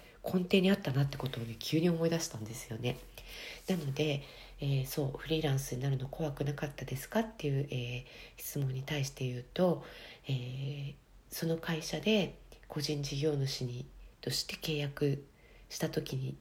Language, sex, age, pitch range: Japanese, female, 40-59, 125-155 Hz